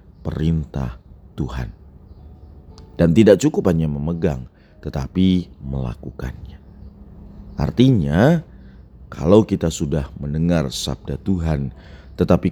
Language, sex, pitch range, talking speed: Indonesian, male, 70-95 Hz, 80 wpm